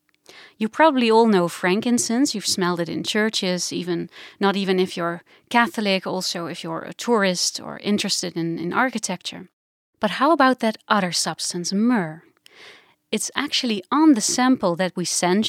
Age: 30-49